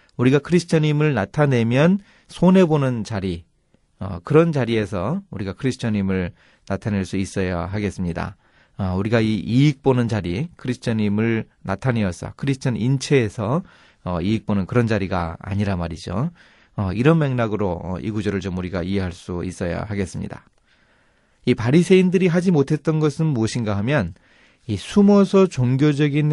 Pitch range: 100-150 Hz